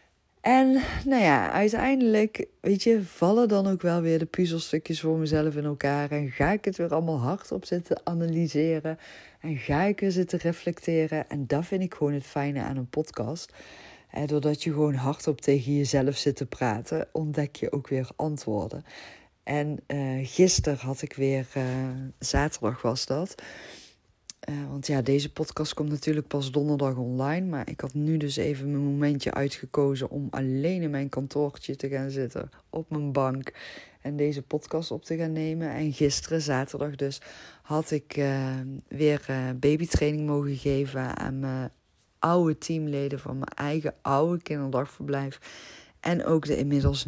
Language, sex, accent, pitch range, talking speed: Dutch, female, Dutch, 135-160 Hz, 165 wpm